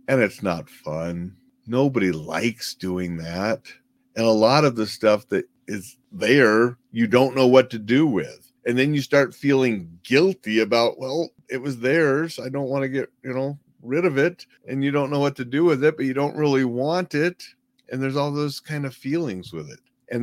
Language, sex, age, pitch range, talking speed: English, male, 40-59, 95-130 Hz, 210 wpm